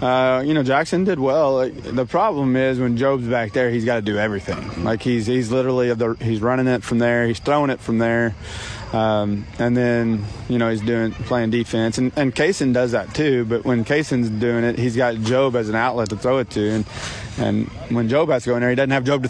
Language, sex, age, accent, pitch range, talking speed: English, male, 30-49, American, 110-125 Hz, 245 wpm